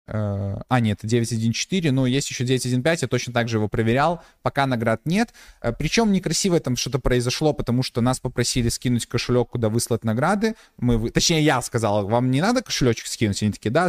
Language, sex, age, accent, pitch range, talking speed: Russian, male, 20-39, native, 120-165 Hz, 175 wpm